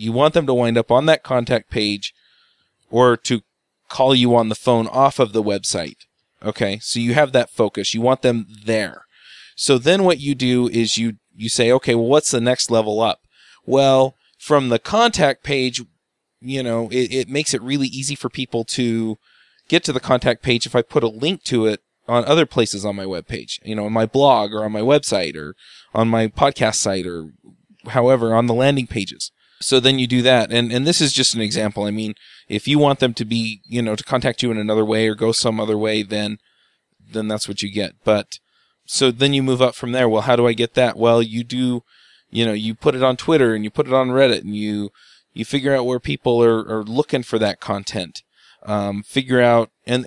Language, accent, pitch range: English, American, 110-130 Hz